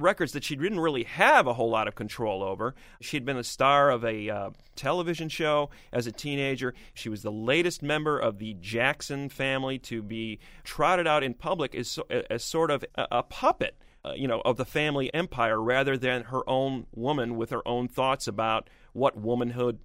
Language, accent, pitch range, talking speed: English, American, 110-140 Hz, 195 wpm